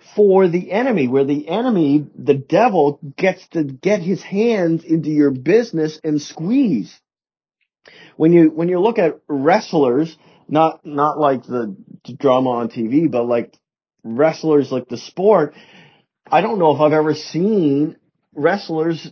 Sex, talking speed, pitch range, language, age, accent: male, 145 wpm, 150-190 Hz, English, 40-59, American